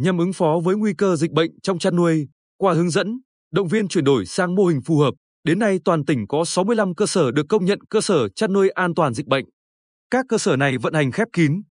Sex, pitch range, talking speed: male, 150-200 Hz, 255 wpm